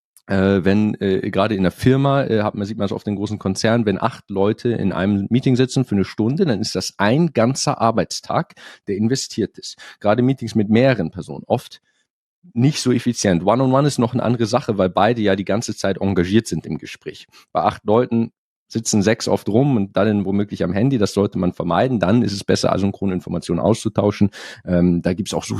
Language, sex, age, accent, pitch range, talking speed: German, male, 40-59, German, 100-135 Hz, 210 wpm